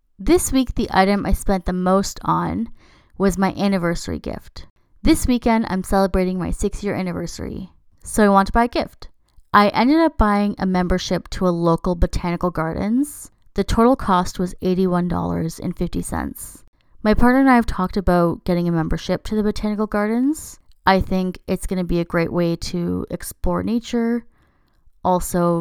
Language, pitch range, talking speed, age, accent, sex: English, 180-220 Hz, 165 wpm, 20-39, American, female